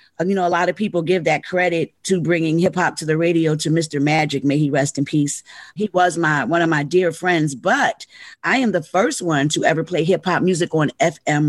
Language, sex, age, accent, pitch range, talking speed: English, female, 40-59, American, 150-185 Hz, 240 wpm